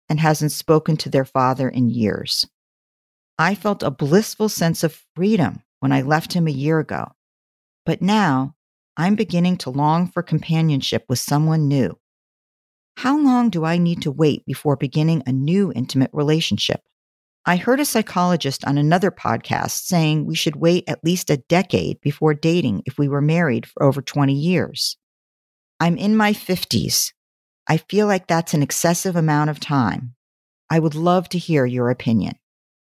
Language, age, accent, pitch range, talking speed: English, 50-69, American, 140-185 Hz, 165 wpm